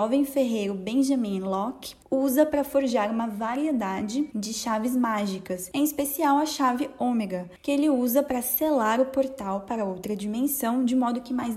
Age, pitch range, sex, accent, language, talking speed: 10-29, 210-275 Hz, female, Brazilian, Portuguese, 160 wpm